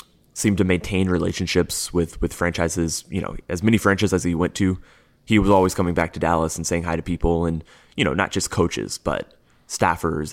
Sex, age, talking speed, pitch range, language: male, 20-39, 210 wpm, 85-95 Hz, English